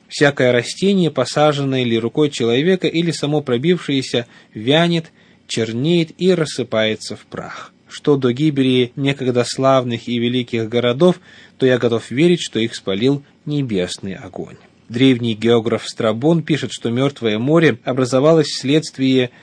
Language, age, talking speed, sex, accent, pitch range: Russian, 20-39, 125 wpm, male, native, 115-145 Hz